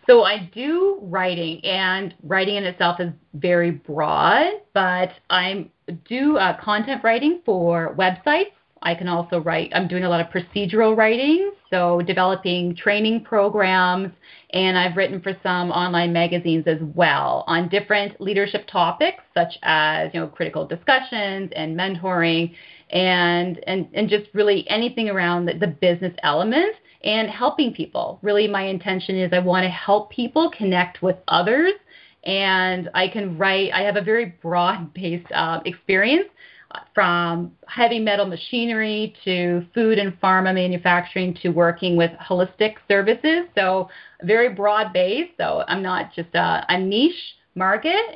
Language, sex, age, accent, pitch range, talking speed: English, female, 30-49, American, 180-215 Hz, 145 wpm